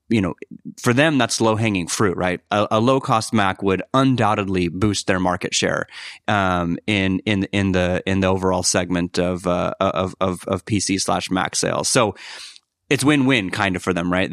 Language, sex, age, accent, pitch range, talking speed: English, male, 30-49, American, 90-110 Hz, 195 wpm